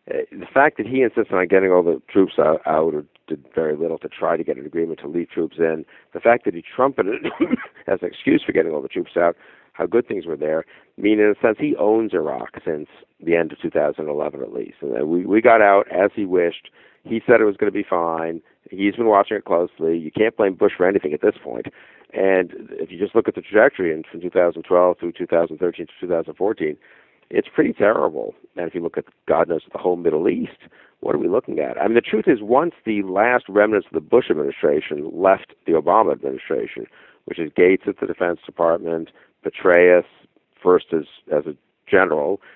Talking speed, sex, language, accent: 215 wpm, male, English, American